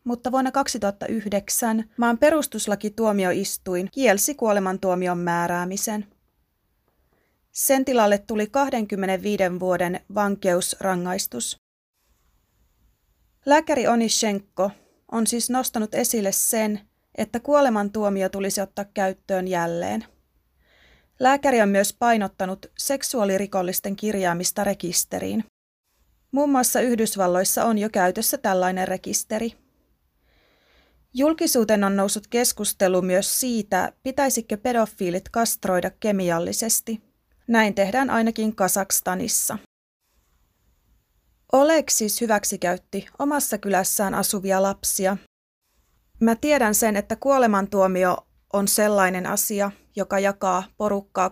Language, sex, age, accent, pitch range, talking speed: Finnish, female, 30-49, native, 190-230 Hz, 90 wpm